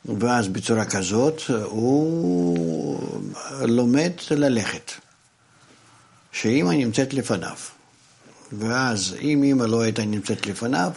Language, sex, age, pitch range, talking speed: Hebrew, male, 60-79, 105-140 Hz, 90 wpm